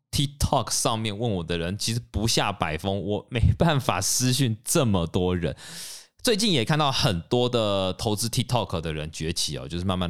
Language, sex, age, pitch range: Chinese, male, 20-39, 85-125 Hz